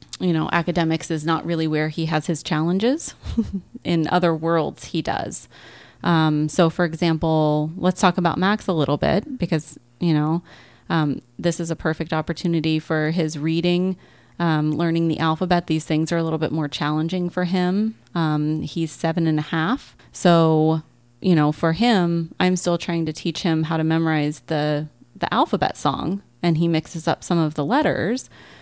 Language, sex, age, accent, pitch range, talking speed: English, female, 30-49, American, 155-185 Hz, 180 wpm